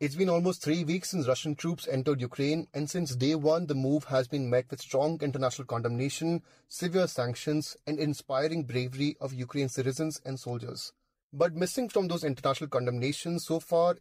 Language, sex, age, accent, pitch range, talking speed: English, male, 30-49, Indian, 135-165 Hz, 175 wpm